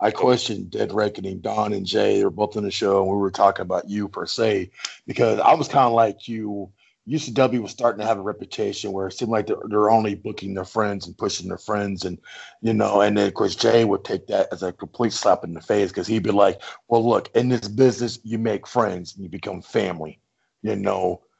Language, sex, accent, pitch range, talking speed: English, male, American, 105-125 Hz, 240 wpm